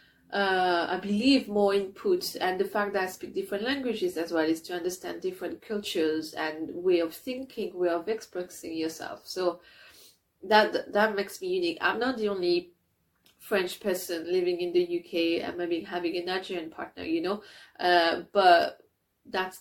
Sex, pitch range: female, 180-230 Hz